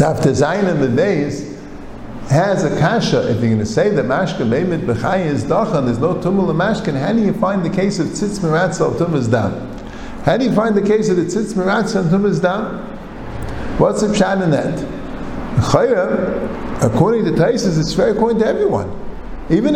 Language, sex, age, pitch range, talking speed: English, male, 50-69, 160-215 Hz, 185 wpm